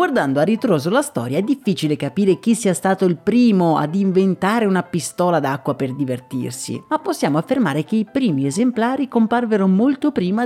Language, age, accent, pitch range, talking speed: Italian, 30-49, native, 155-220 Hz, 170 wpm